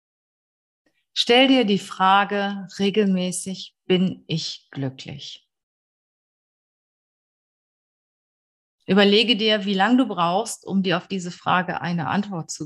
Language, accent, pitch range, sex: German, German, 165-215 Hz, female